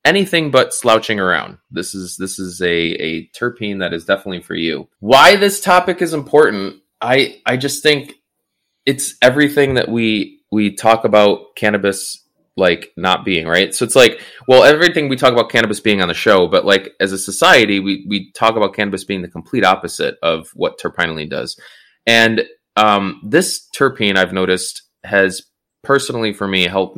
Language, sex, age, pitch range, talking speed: English, male, 20-39, 90-115 Hz, 175 wpm